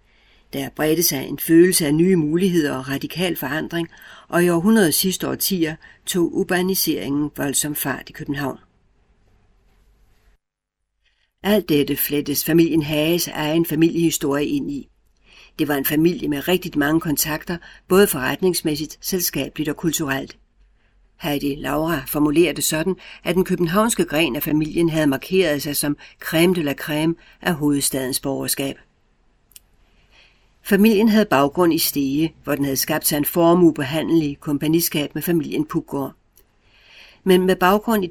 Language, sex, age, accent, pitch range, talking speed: Danish, female, 60-79, native, 140-175 Hz, 135 wpm